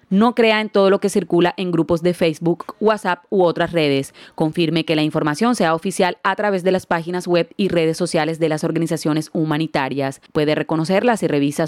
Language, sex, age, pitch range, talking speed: Spanish, female, 30-49, 160-190 Hz, 195 wpm